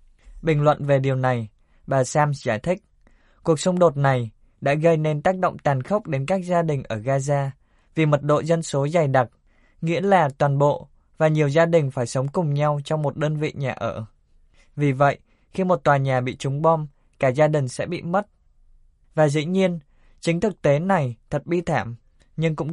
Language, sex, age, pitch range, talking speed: Vietnamese, male, 20-39, 130-165 Hz, 205 wpm